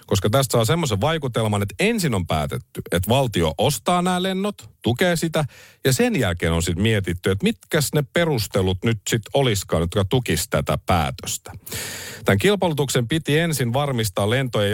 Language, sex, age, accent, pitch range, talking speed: Finnish, male, 50-69, native, 100-145 Hz, 160 wpm